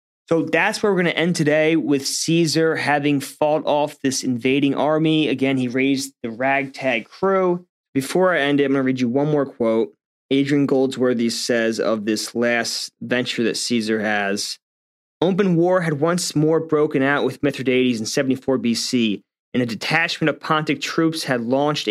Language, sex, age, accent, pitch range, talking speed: English, male, 20-39, American, 130-155 Hz, 175 wpm